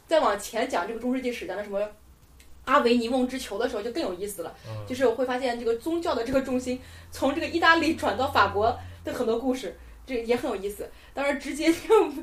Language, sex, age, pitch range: Chinese, female, 20-39, 225-320 Hz